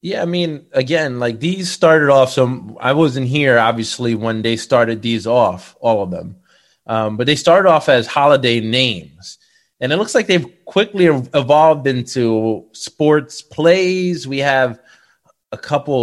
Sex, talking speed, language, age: male, 160 wpm, English, 20-39